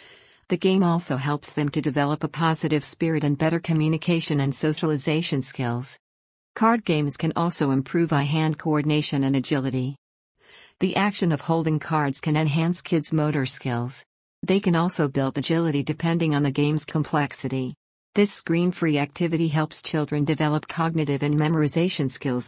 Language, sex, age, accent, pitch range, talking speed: English, female, 50-69, American, 140-165 Hz, 145 wpm